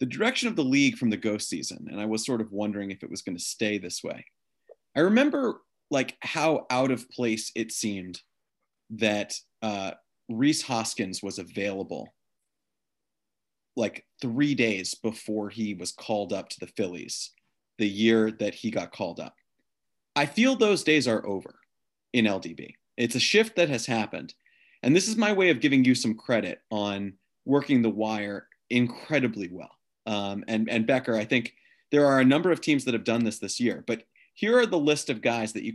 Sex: male